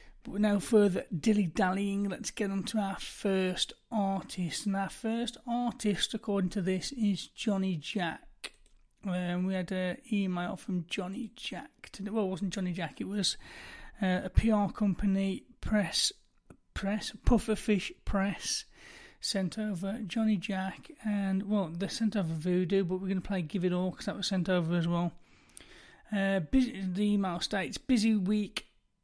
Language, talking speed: English, 160 wpm